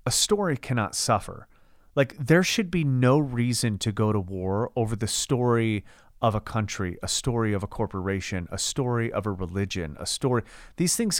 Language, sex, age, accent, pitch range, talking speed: English, male, 30-49, American, 105-140 Hz, 175 wpm